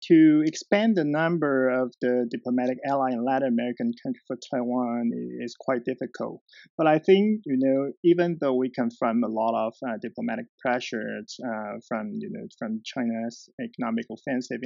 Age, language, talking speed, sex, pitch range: 30-49, English, 165 wpm, male, 115-140 Hz